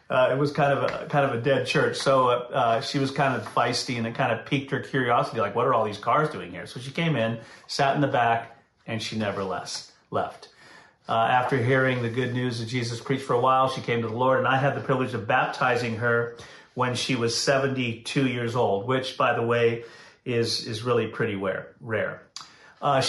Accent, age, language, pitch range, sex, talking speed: American, 40-59, English, 120-145 Hz, male, 225 wpm